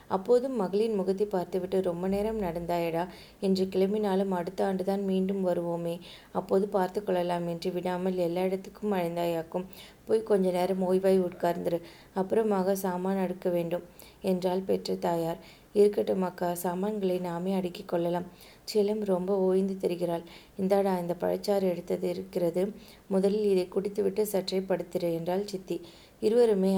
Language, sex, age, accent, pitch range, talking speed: Tamil, female, 20-39, native, 180-200 Hz, 115 wpm